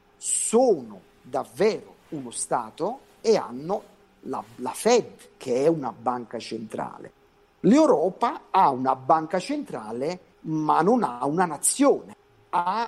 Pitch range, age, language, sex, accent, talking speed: 125-195 Hz, 50-69, Italian, male, native, 115 wpm